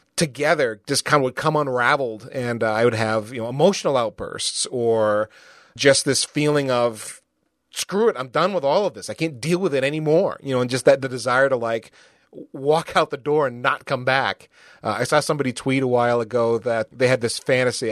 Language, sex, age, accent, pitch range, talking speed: English, male, 30-49, American, 115-155 Hz, 220 wpm